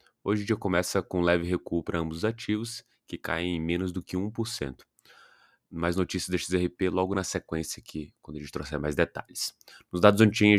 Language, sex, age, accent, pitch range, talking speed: Portuguese, male, 20-39, Brazilian, 80-95 Hz, 200 wpm